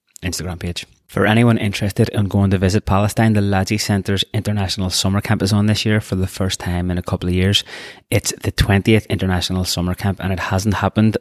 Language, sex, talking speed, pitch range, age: English, male, 210 wpm, 85-95 Hz, 20-39